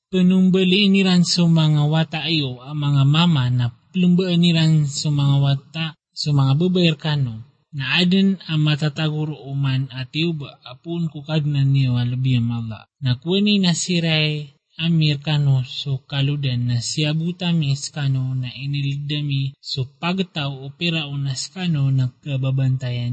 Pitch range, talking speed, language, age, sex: 135-170 Hz, 130 wpm, Filipino, 20-39, male